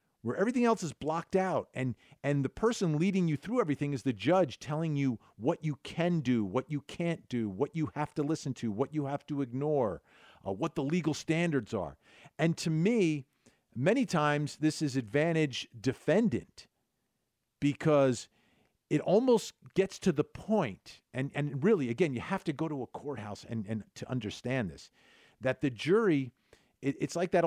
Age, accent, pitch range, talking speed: 50-69, American, 130-170 Hz, 180 wpm